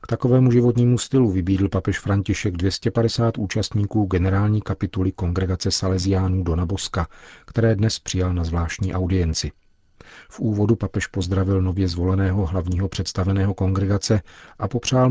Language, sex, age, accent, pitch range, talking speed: Czech, male, 40-59, native, 90-105 Hz, 125 wpm